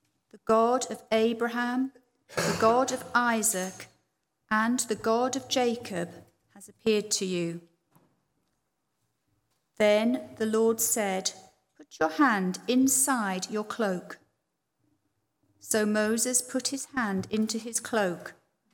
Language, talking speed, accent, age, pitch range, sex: English, 110 wpm, British, 40-59, 185-245 Hz, female